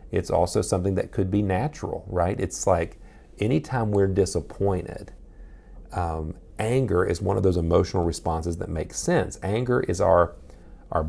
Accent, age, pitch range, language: American, 40-59, 85-105 Hz, English